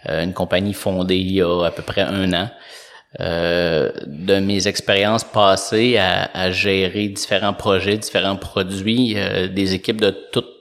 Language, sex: French, male